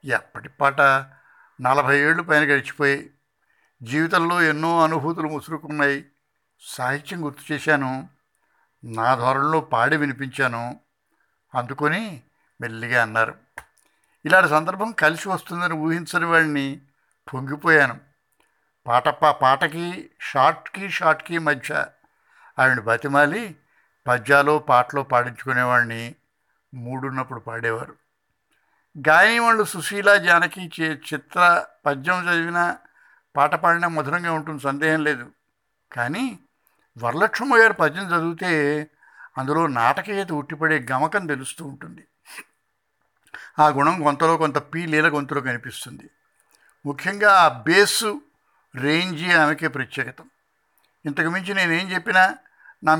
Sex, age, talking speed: male, 60-79, 95 wpm